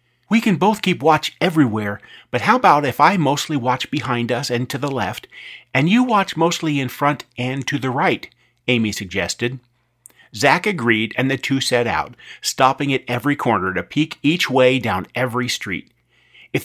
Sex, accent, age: male, American, 40-59